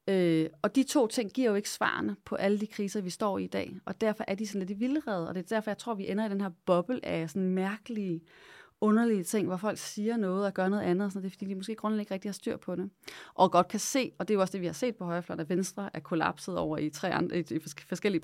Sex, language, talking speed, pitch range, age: female, Danish, 285 wpm, 170-210 Hz, 30-49